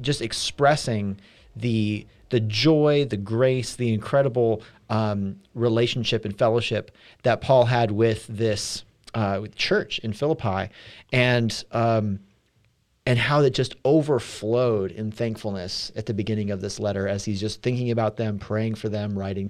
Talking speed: 150 wpm